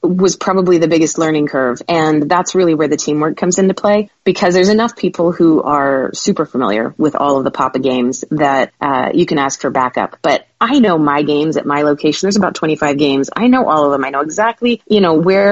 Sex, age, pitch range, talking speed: female, 30-49, 150-190 Hz, 230 wpm